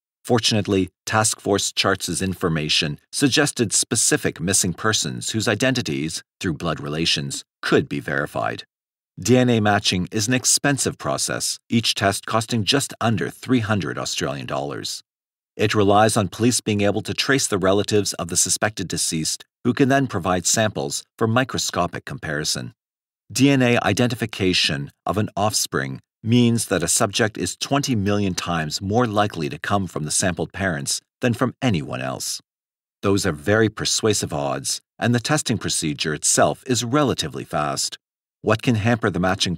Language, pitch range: English, 90-120 Hz